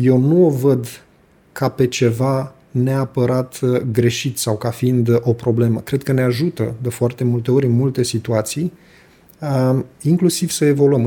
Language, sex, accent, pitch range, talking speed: Romanian, male, native, 120-135 Hz, 150 wpm